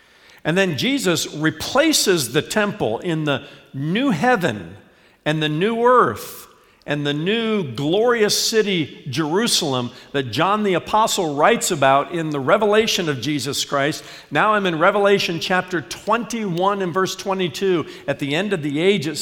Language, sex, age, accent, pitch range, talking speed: English, male, 50-69, American, 125-185 Hz, 150 wpm